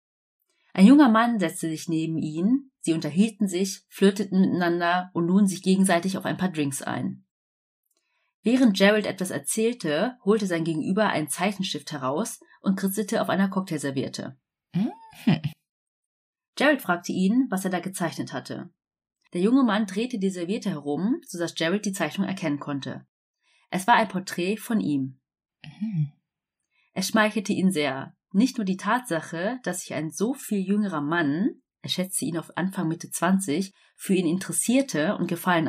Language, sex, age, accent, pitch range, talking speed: German, female, 30-49, German, 165-210 Hz, 150 wpm